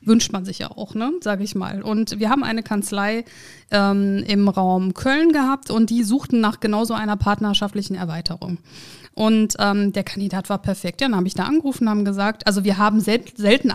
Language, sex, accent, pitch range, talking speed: German, female, German, 195-250 Hz, 195 wpm